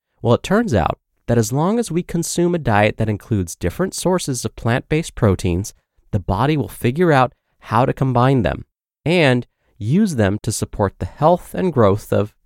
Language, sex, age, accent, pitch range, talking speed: English, male, 30-49, American, 105-150 Hz, 185 wpm